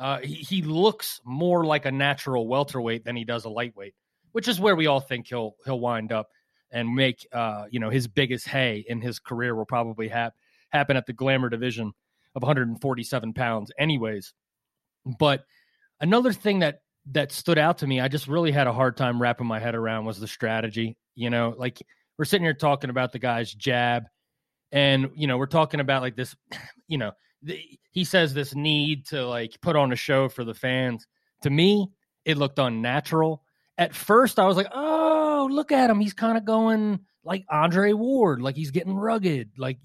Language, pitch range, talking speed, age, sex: English, 125-185 Hz, 195 wpm, 30-49, male